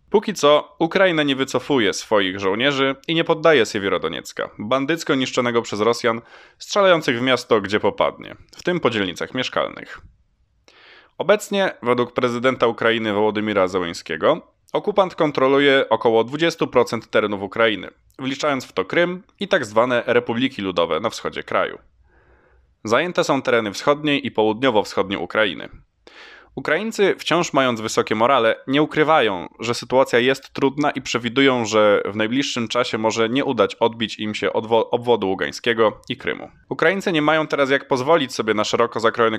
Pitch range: 115-155 Hz